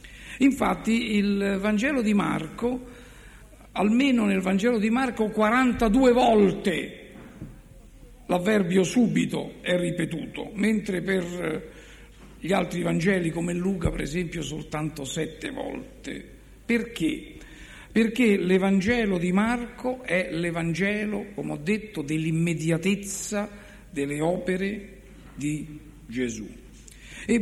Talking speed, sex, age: 95 wpm, male, 60-79